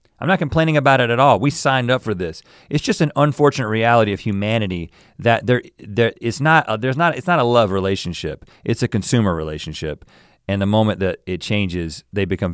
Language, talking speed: English, 210 wpm